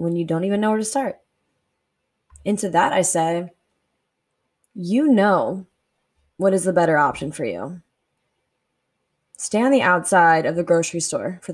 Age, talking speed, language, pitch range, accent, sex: 20-39, 155 wpm, English, 175-210 Hz, American, female